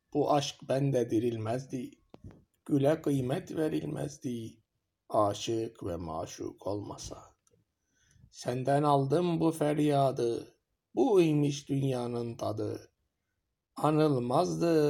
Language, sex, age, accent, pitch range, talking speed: Turkish, male, 60-79, native, 110-145 Hz, 80 wpm